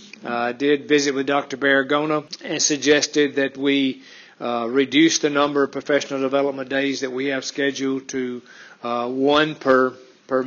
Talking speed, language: 160 wpm, English